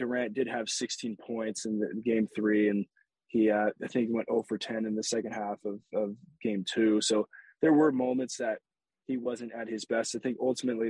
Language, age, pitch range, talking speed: English, 20-39, 115-135 Hz, 210 wpm